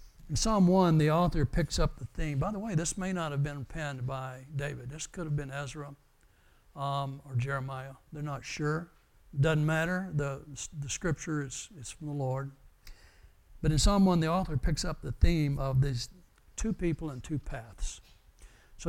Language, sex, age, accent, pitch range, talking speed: English, male, 60-79, American, 125-160 Hz, 185 wpm